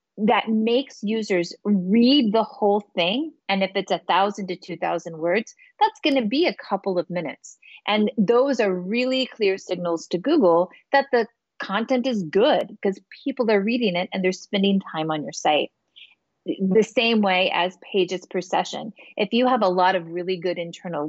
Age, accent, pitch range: 30-49, American, 175-245 Hz